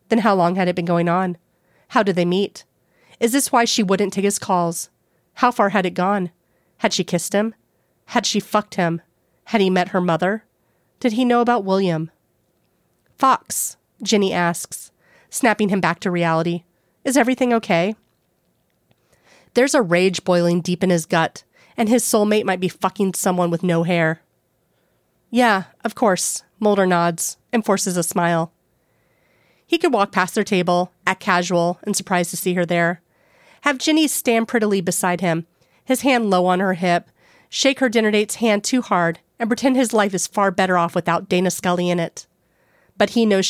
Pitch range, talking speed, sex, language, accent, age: 175-220 Hz, 180 wpm, female, English, American, 30-49